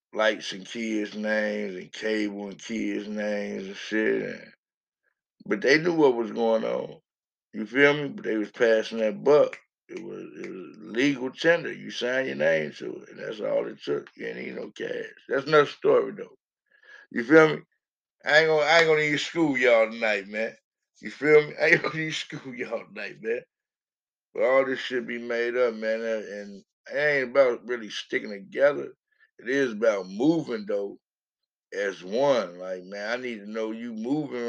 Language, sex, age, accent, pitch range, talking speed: English, male, 60-79, American, 110-150 Hz, 190 wpm